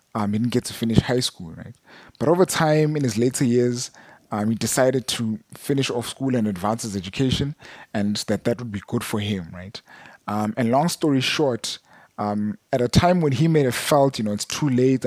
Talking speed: 220 wpm